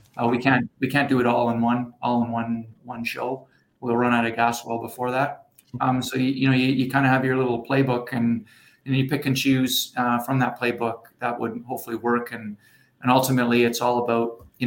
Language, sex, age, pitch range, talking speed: English, male, 30-49, 115-125 Hz, 235 wpm